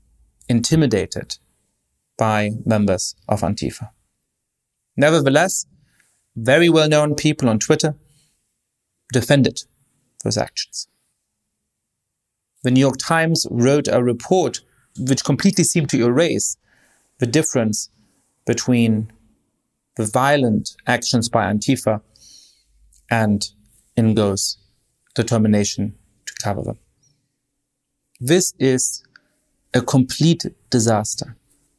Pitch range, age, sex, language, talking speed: 115-150 Hz, 30-49, male, English, 85 wpm